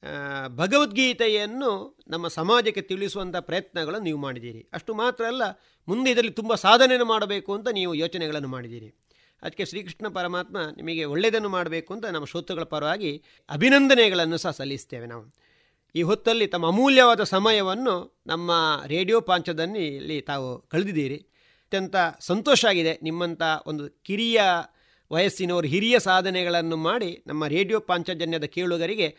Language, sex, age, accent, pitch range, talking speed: Kannada, male, 40-59, native, 160-210 Hz, 115 wpm